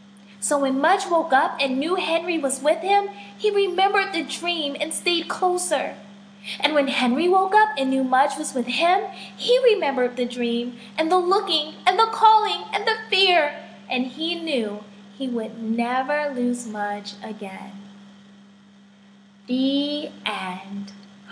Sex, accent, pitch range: female, American, 205-315 Hz